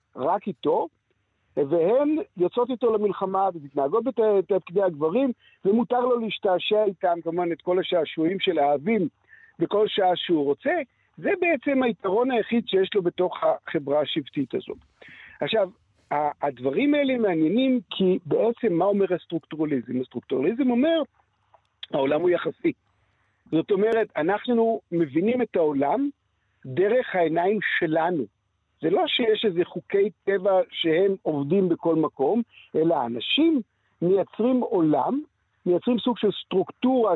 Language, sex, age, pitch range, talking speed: Hebrew, male, 50-69, 170-240 Hz, 120 wpm